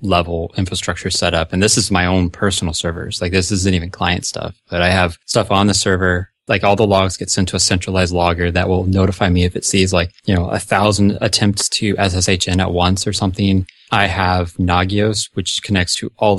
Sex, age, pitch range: male, 20-39, 90-100 Hz